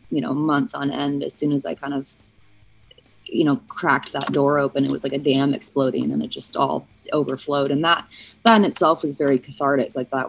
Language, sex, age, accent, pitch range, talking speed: English, female, 20-39, American, 140-185 Hz, 220 wpm